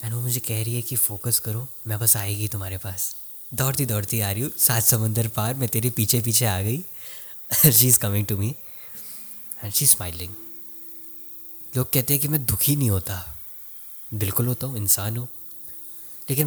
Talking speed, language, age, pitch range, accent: 180 wpm, Hindi, 20-39, 105-120 Hz, native